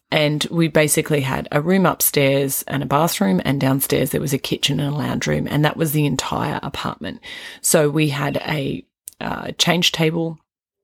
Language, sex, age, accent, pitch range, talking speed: English, female, 30-49, Australian, 140-170 Hz, 185 wpm